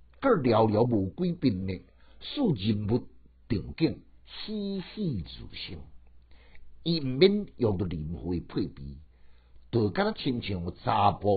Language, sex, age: Chinese, male, 60-79